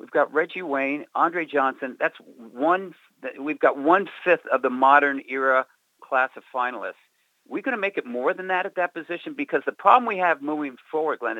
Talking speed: 190 wpm